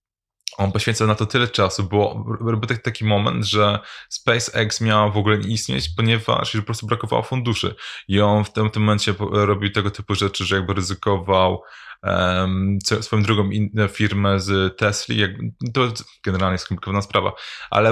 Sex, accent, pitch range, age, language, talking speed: male, native, 95-110 Hz, 20-39, Polish, 165 wpm